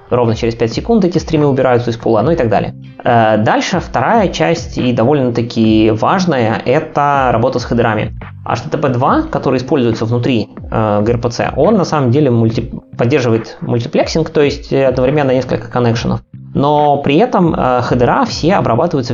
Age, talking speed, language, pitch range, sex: 20-39, 145 wpm, Russian, 115-150 Hz, male